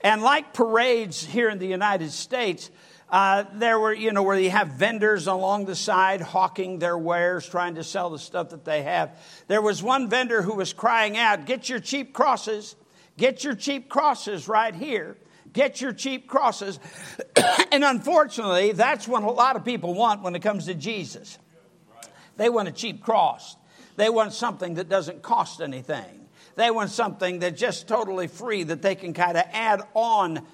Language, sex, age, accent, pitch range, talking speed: English, male, 60-79, American, 175-230 Hz, 185 wpm